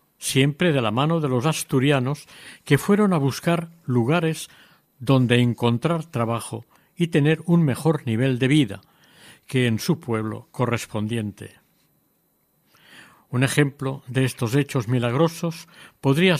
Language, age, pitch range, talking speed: Spanish, 60-79, 125-160 Hz, 125 wpm